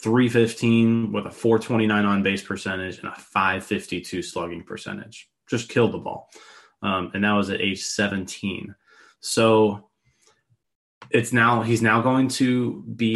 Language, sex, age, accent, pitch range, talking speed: English, male, 20-39, American, 100-120 Hz, 140 wpm